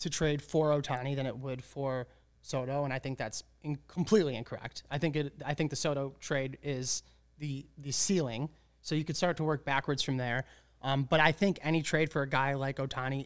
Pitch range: 130-155 Hz